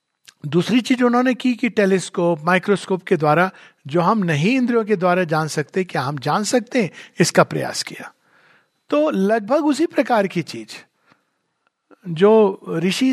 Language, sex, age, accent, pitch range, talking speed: Hindi, male, 50-69, native, 180-225 Hz, 150 wpm